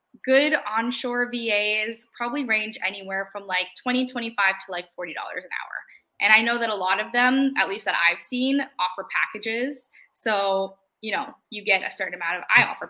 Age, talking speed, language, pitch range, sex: 10-29, 195 wpm, English, 190-245 Hz, female